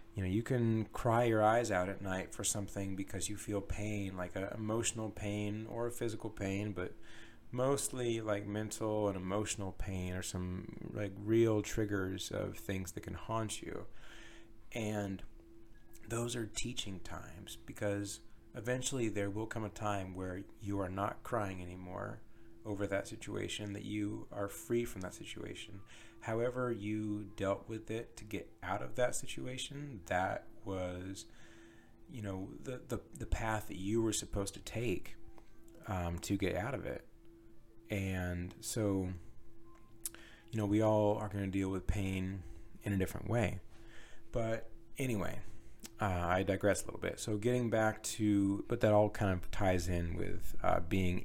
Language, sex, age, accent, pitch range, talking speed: English, male, 30-49, American, 95-110 Hz, 165 wpm